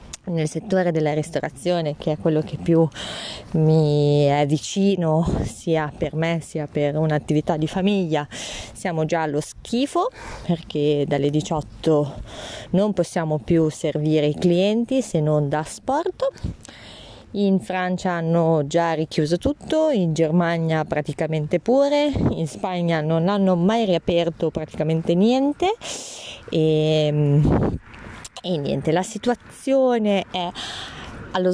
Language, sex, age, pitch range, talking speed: Italian, female, 20-39, 155-195 Hz, 120 wpm